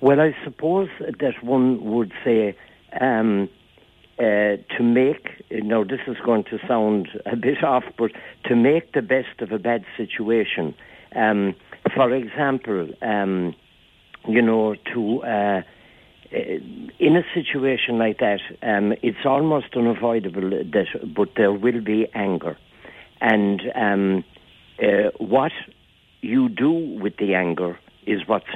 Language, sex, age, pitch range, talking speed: English, male, 60-79, 105-130 Hz, 135 wpm